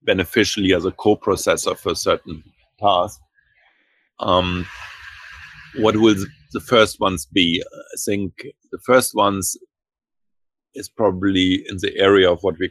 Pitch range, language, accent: 85-100 Hz, English, German